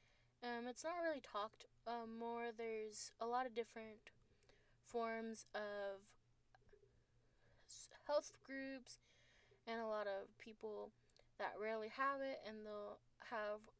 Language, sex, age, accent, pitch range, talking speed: English, female, 10-29, American, 205-235 Hz, 120 wpm